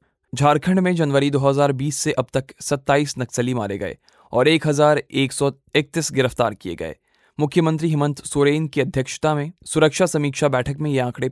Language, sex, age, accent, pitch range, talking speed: Hindi, male, 20-39, native, 130-150 Hz, 150 wpm